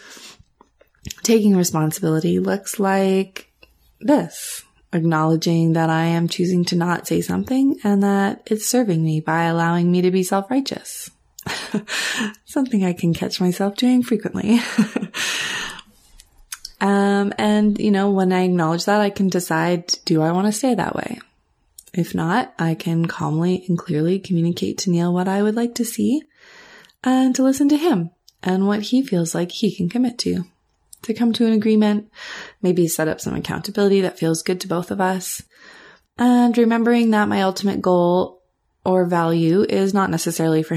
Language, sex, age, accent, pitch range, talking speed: English, female, 20-39, American, 165-210 Hz, 160 wpm